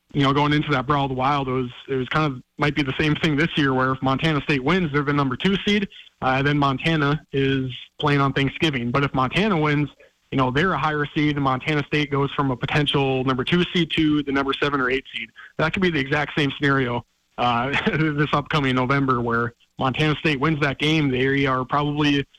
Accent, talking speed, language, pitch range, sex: American, 225 wpm, English, 130-155 Hz, male